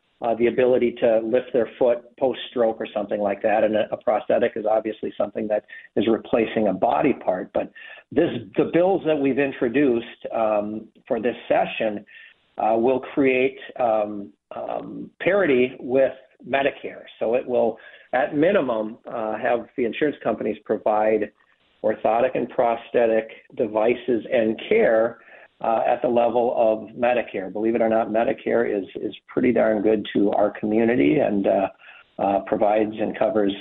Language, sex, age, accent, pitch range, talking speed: English, male, 50-69, American, 105-120 Hz, 155 wpm